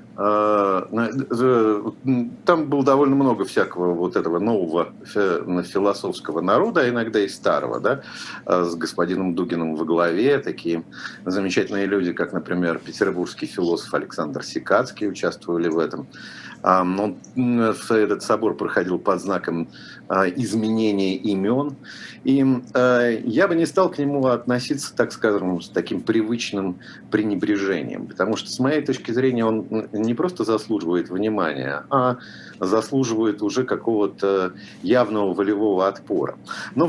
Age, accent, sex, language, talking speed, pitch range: 50-69, native, male, Russian, 120 wpm, 100-130 Hz